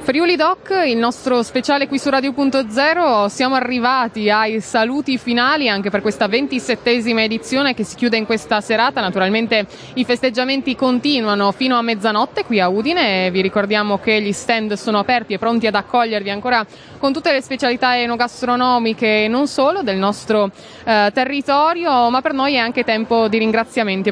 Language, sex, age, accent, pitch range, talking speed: Italian, female, 20-39, native, 215-255 Hz, 160 wpm